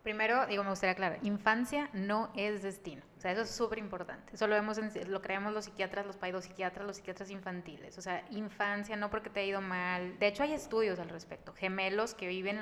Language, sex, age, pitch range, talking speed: English, female, 20-39, 185-220 Hz, 220 wpm